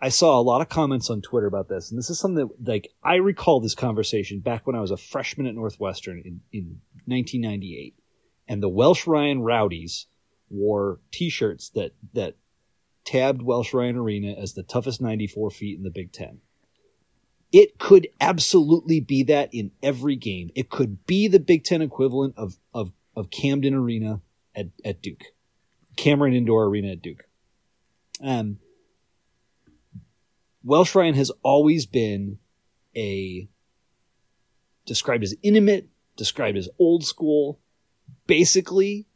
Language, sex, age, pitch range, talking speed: English, male, 30-49, 105-150 Hz, 145 wpm